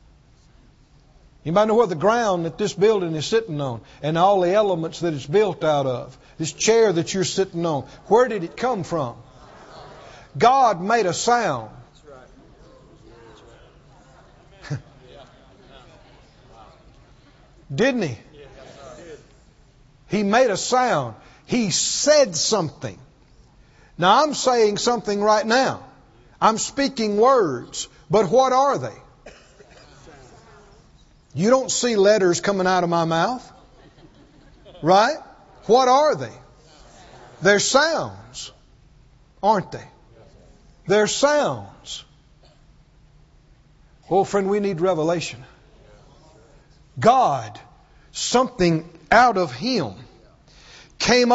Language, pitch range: English, 165-235 Hz